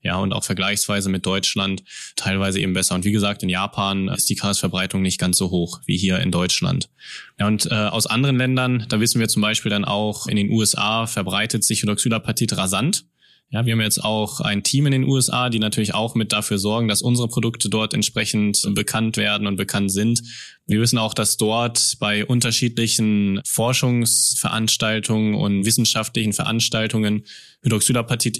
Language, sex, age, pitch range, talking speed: German, male, 20-39, 105-120 Hz, 175 wpm